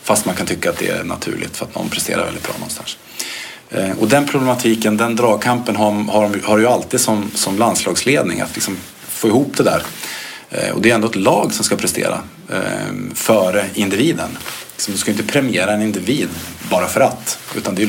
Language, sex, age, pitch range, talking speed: English, male, 50-69, 100-125 Hz, 185 wpm